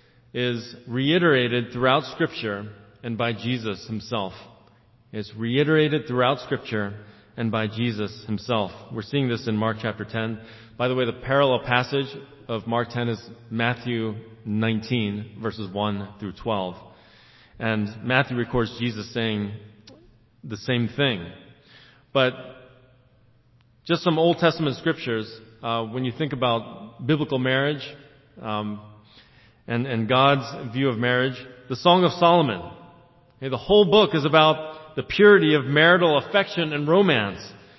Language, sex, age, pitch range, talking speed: English, male, 40-59, 110-145 Hz, 135 wpm